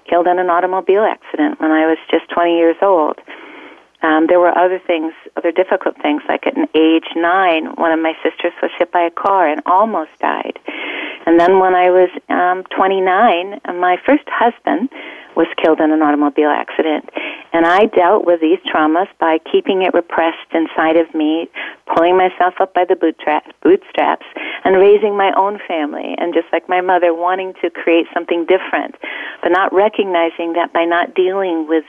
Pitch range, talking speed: 165-195 Hz, 175 wpm